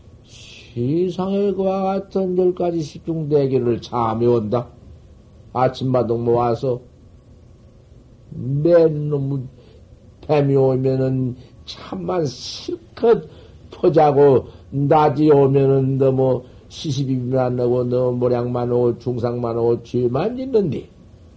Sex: male